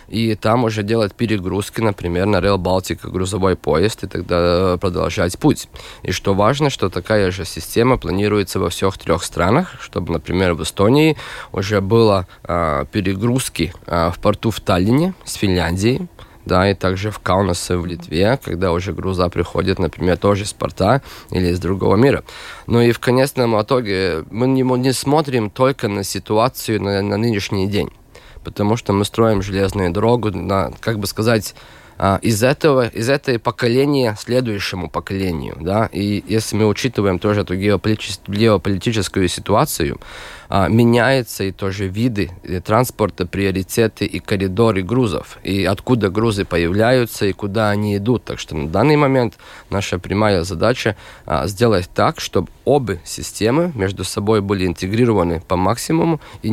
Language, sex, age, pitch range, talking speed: Russian, male, 20-39, 95-115 Hz, 145 wpm